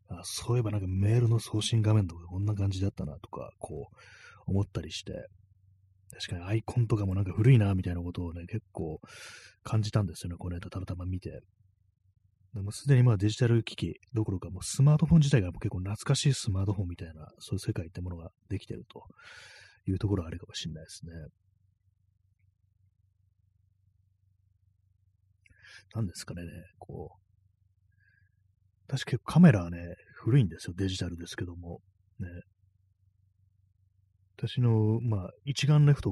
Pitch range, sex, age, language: 95-110 Hz, male, 30-49, Japanese